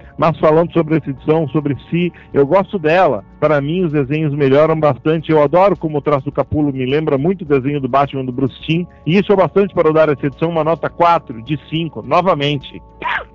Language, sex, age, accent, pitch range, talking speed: Portuguese, male, 50-69, Brazilian, 135-165 Hz, 215 wpm